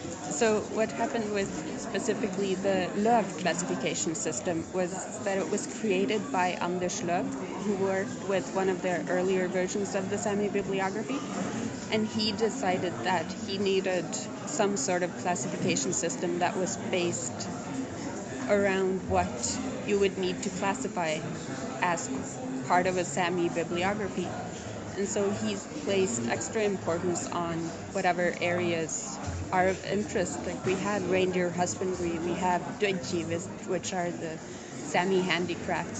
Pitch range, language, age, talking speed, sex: 180-205 Hz, English, 30-49, 135 wpm, female